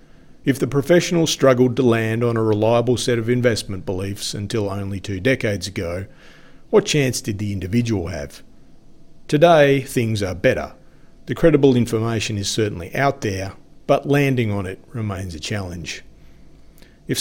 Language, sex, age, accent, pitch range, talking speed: English, male, 40-59, Australian, 100-130 Hz, 150 wpm